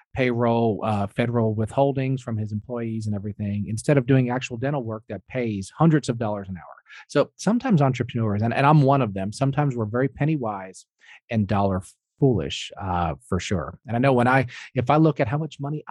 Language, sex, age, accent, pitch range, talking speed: English, male, 40-59, American, 110-140 Hz, 205 wpm